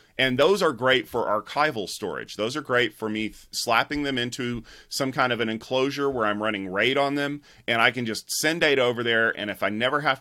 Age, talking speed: 30-49, 230 wpm